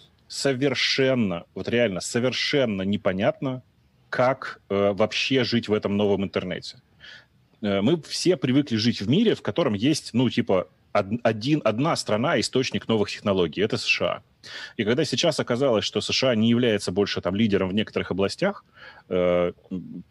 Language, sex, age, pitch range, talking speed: Russian, male, 30-49, 95-120 Hz, 145 wpm